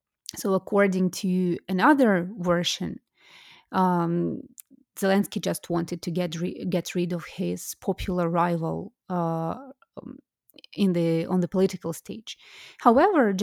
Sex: female